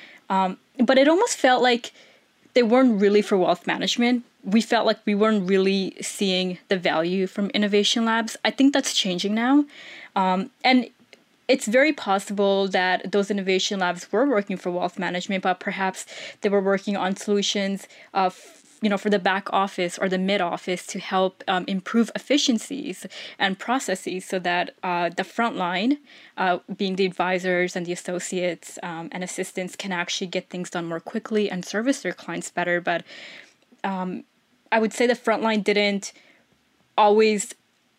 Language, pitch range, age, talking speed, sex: English, 185-230 Hz, 20-39, 165 wpm, female